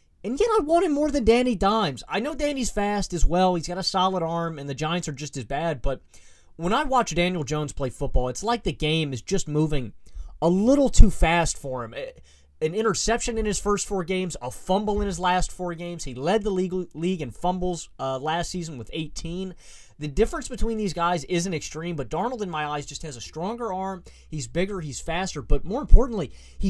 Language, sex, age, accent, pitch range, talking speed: English, male, 30-49, American, 135-190 Hz, 220 wpm